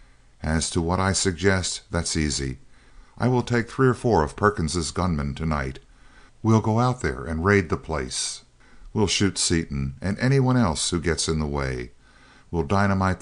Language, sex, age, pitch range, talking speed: English, male, 50-69, 75-110 Hz, 170 wpm